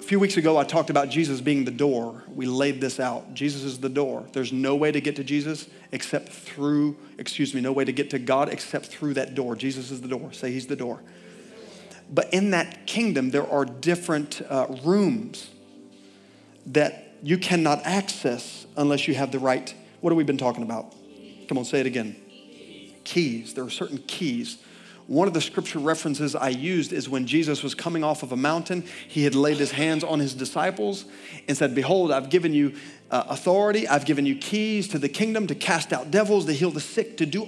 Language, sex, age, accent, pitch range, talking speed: English, male, 40-59, American, 145-200 Hz, 210 wpm